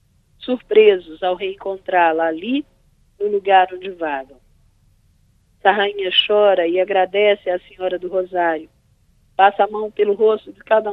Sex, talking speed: female, 130 wpm